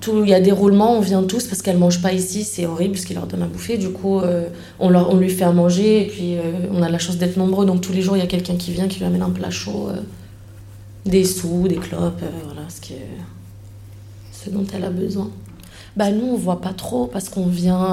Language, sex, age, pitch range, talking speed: French, female, 20-39, 175-195 Hz, 270 wpm